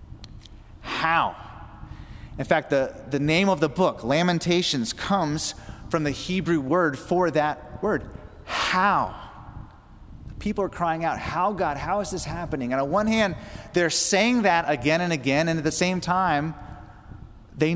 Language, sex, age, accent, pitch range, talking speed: English, male, 30-49, American, 110-175 Hz, 150 wpm